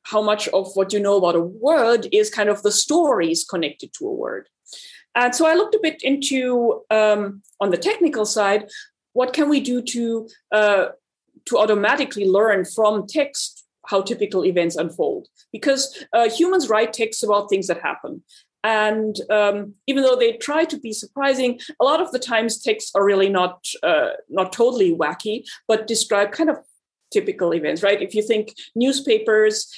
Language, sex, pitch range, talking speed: English, female, 195-275 Hz, 175 wpm